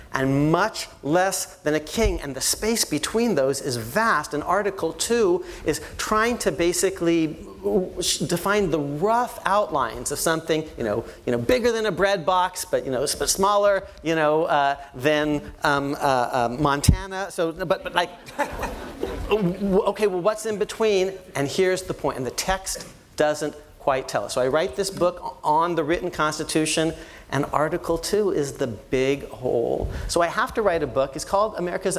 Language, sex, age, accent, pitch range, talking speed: English, male, 40-59, American, 140-190 Hz, 175 wpm